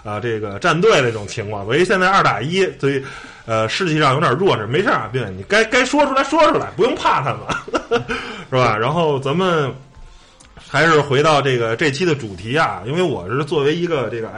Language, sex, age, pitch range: Chinese, male, 20-39, 130-215 Hz